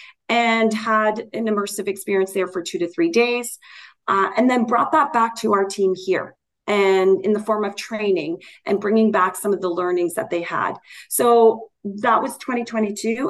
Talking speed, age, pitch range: 185 wpm, 30-49, 190-225 Hz